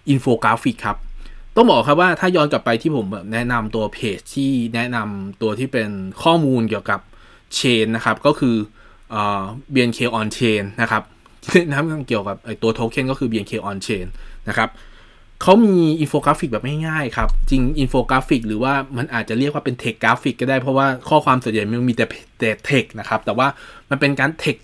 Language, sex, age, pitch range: Thai, male, 20-39, 110-135 Hz